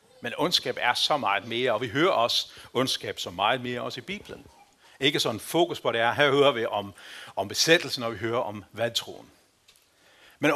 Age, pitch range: 60-79, 120-180 Hz